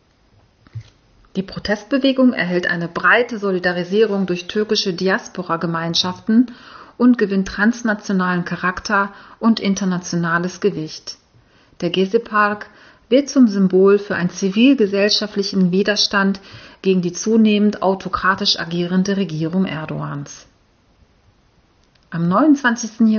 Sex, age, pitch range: female, 40-59, 180-220 Hz